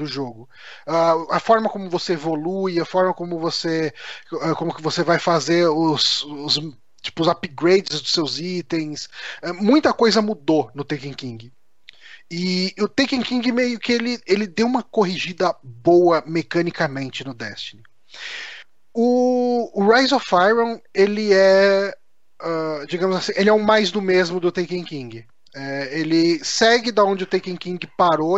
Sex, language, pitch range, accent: male, Portuguese, 155-195 Hz, Brazilian